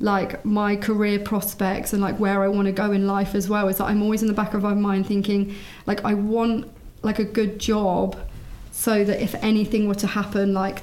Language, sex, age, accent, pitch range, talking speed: English, female, 30-49, British, 195-215 Hz, 235 wpm